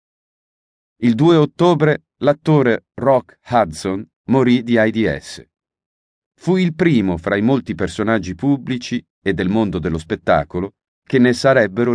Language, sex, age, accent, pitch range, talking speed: Italian, male, 40-59, native, 95-140 Hz, 125 wpm